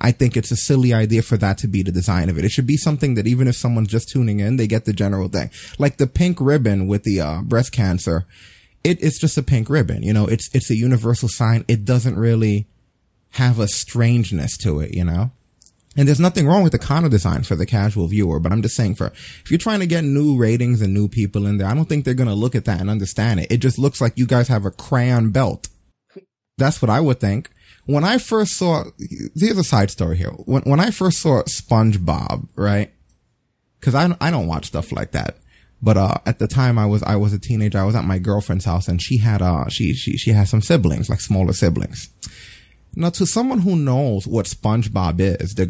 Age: 20-39